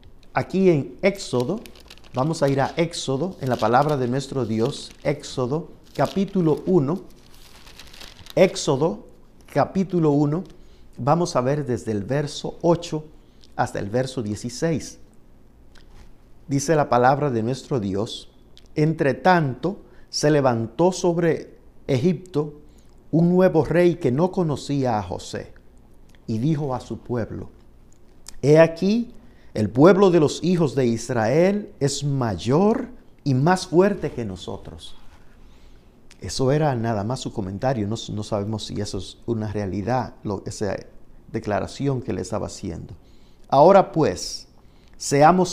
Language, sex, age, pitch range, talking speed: Spanish, male, 50-69, 115-170 Hz, 125 wpm